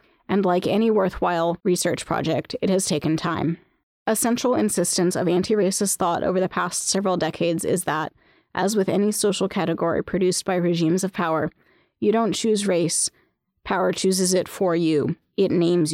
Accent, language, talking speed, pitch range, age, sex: American, English, 165 wpm, 165-195 Hz, 30-49, female